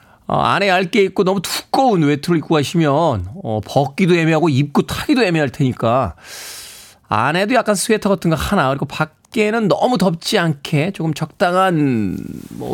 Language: Korean